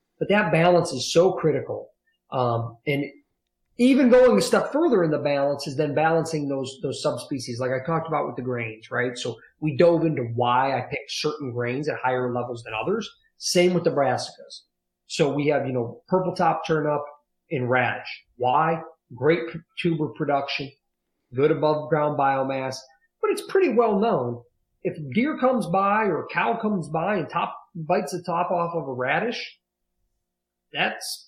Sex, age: male, 40-59